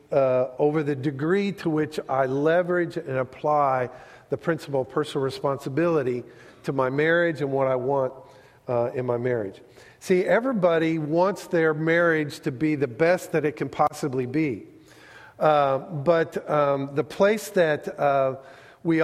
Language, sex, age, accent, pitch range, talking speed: English, male, 50-69, American, 145-180 Hz, 150 wpm